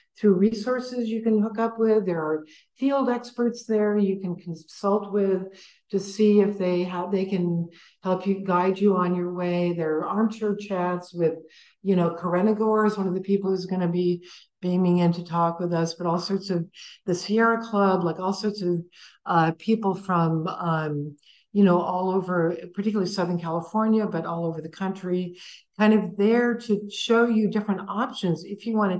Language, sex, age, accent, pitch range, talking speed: English, female, 60-79, American, 175-215 Hz, 190 wpm